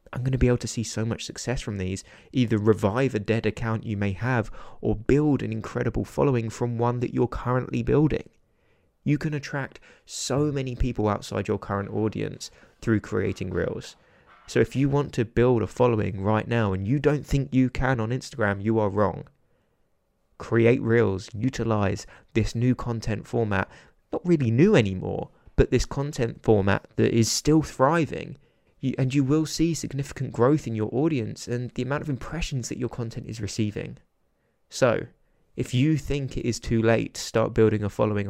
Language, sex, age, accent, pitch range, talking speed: English, male, 20-39, British, 110-135 Hz, 180 wpm